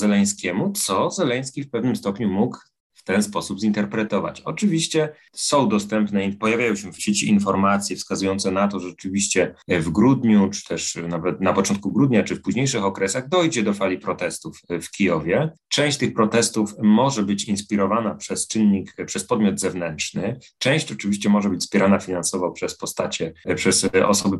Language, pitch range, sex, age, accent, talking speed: Polish, 100-130 Hz, male, 30-49, native, 155 wpm